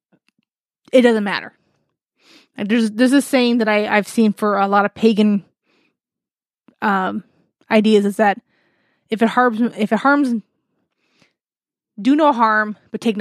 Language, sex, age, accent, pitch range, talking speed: English, female, 20-39, American, 210-245 Hz, 145 wpm